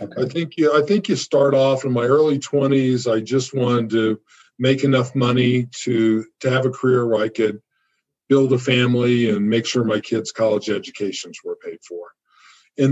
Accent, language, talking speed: American, English, 190 wpm